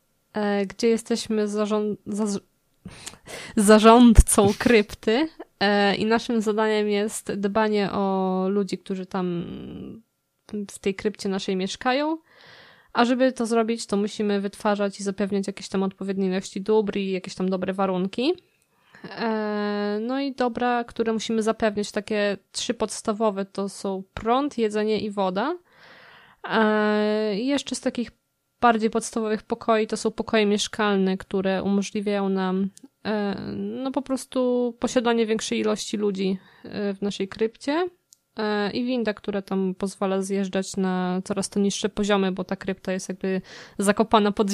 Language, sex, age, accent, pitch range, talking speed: Polish, female, 20-39, native, 195-225 Hz, 130 wpm